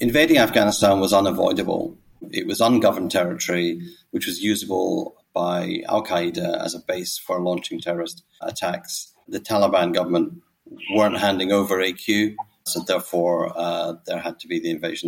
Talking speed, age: 145 wpm, 40-59